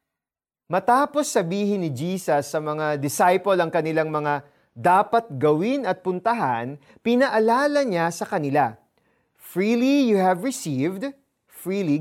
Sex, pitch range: male, 160-250 Hz